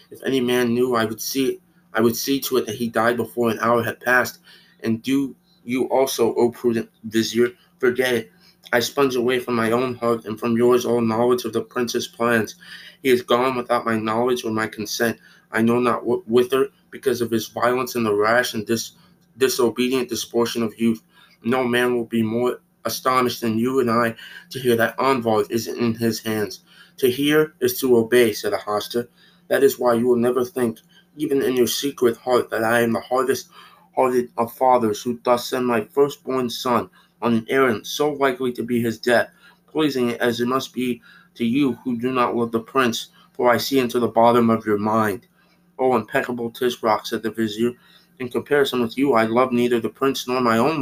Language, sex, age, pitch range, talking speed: English, male, 20-39, 115-130 Hz, 205 wpm